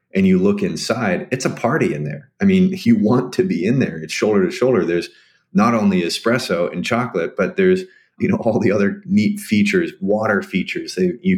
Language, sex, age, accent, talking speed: English, male, 30-49, American, 205 wpm